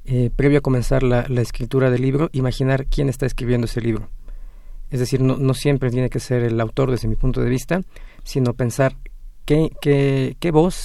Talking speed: 200 wpm